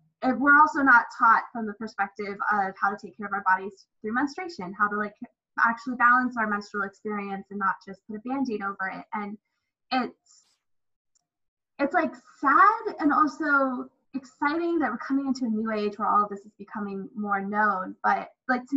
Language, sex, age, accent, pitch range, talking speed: English, female, 10-29, American, 205-265 Hz, 190 wpm